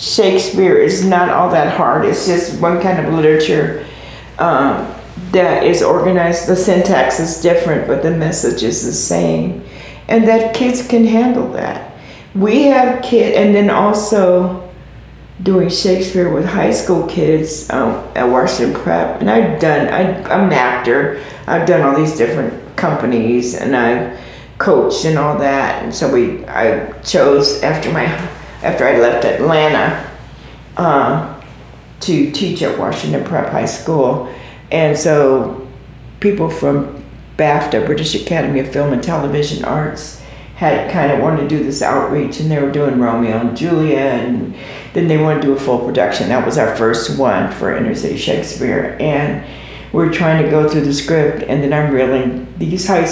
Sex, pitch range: female, 135-180 Hz